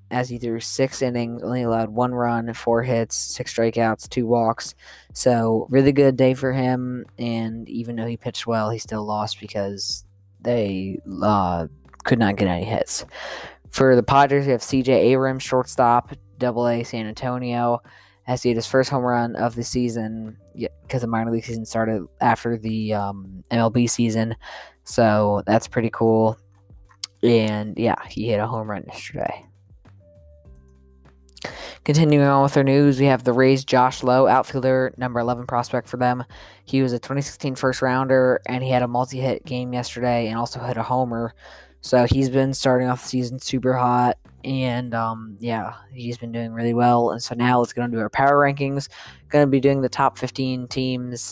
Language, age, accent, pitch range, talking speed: English, 10-29, American, 110-130 Hz, 175 wpm